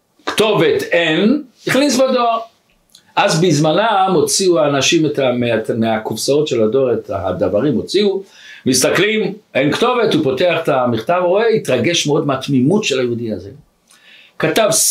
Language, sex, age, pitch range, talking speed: Hebrew, male, 60-79, 170-245 Hz, 115 wpm